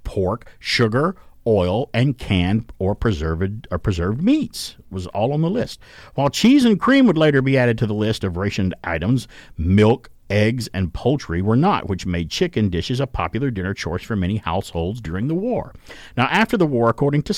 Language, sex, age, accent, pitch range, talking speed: English, male, 50-69, American, 95-135 Hz, 190 wpm